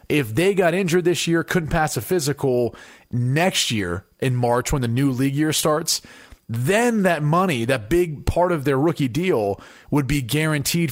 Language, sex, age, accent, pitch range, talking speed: English, male, 30-49, American, 120-155 Hz, 180 wpm